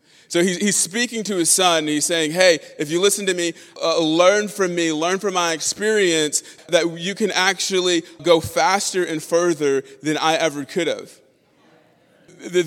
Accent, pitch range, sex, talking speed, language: American, 150-195 Hz, male, 175 wpm, English